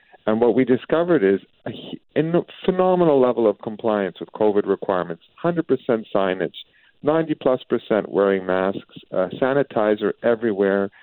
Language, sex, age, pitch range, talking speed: English, male, 50-69, 105-140 Hz, 125 wpm